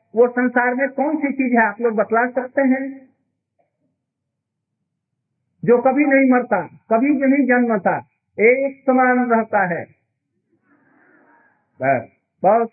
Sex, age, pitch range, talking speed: male, 50-69, 160-255 Hz, 115 wpm